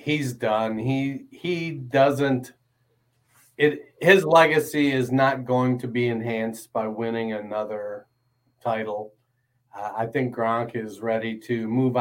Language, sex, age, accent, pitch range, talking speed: English, male, 40-59, American, 115-130 Hz, 135 wpm